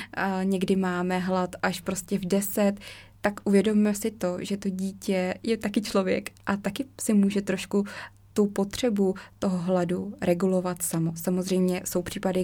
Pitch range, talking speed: 180-200 Hz, 150 wpm